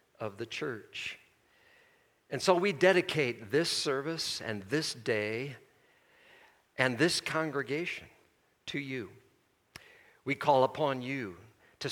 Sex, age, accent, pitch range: male, 50-69, American, 115-150 Hz